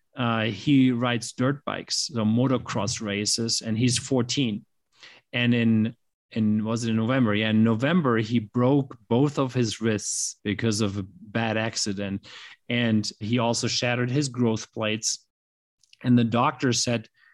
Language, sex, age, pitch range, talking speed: English, male, 30-49, 110-130 Hz, 150 wpm